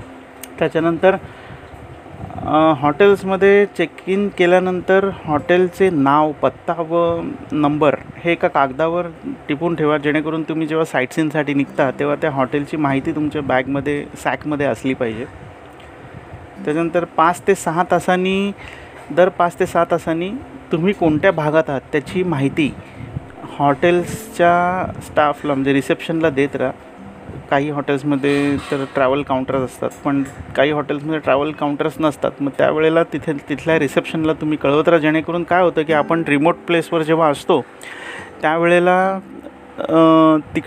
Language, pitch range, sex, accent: Marathi, 145-175 Hz, male, native